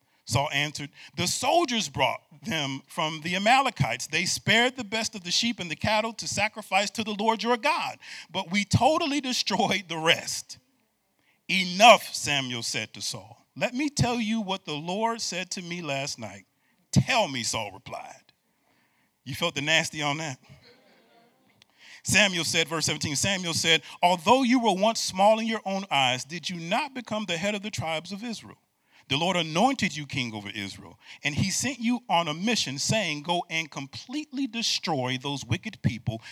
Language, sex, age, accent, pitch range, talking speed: English, male, 40-59, American, 135-210 Hz, 175 wpm